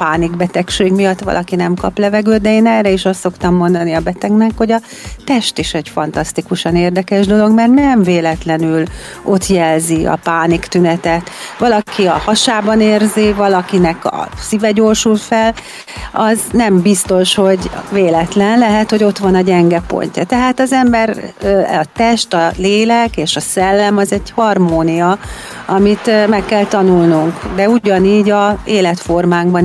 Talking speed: 150 wpm